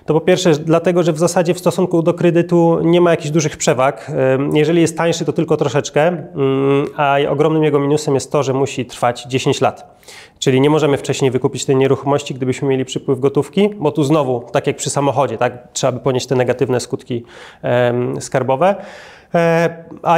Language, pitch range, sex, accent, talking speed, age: Polish, 130-160 Hz, male, native, 185 wpm, 30-49